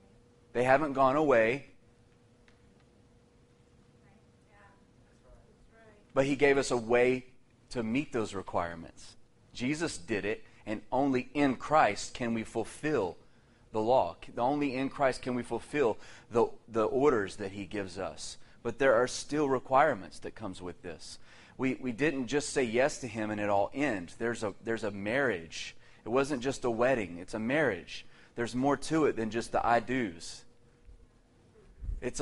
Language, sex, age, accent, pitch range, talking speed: English, male, 30-49, American, 110-130 Hz, 155 wpm